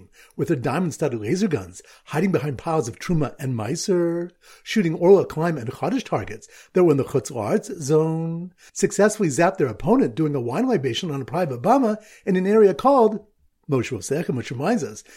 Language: English